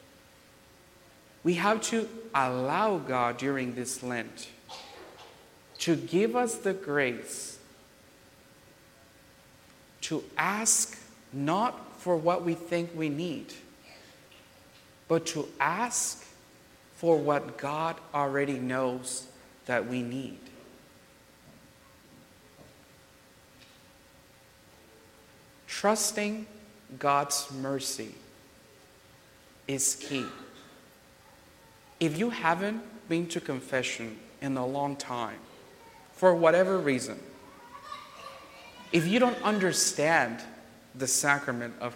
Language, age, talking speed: English, 50-69, 85 wpm